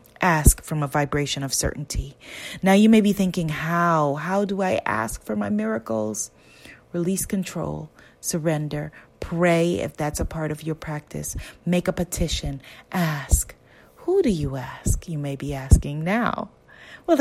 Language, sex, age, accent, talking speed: English, female, 30-49, American, 155 wpm